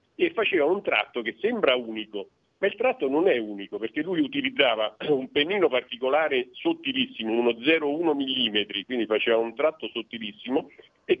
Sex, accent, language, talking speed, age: male, native, Italian, 155 wpm, 50-69